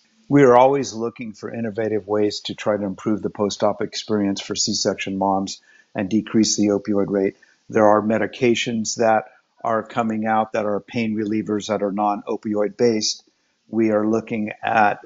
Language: English